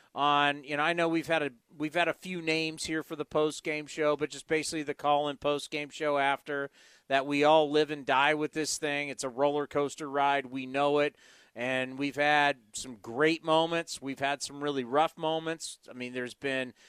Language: English